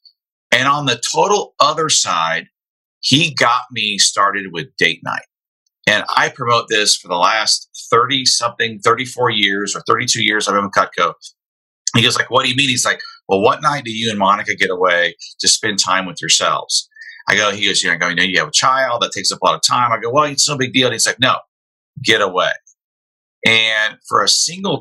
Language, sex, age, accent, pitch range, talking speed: English, male, 40-59, American, 110-150 Hz, 210 wpm